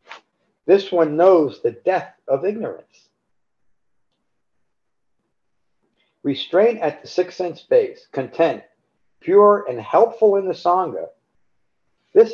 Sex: male